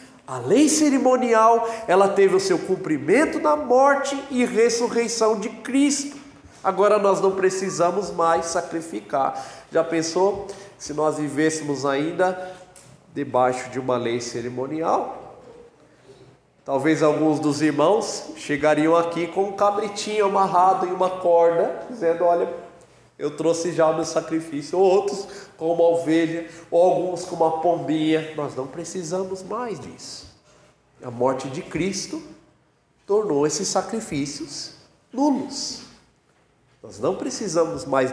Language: Portuguese